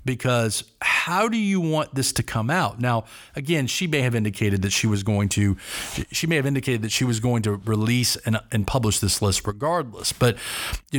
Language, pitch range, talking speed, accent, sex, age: English, 105-130 Hz, 210 wpm, American, male, 40-59